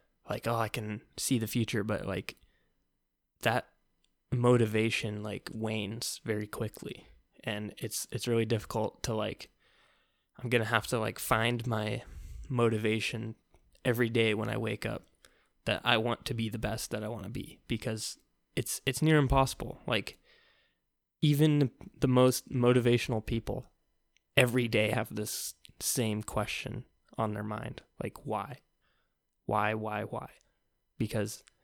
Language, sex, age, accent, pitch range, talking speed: English, male, 10-29, American, 110-125 Hz, 140 wpm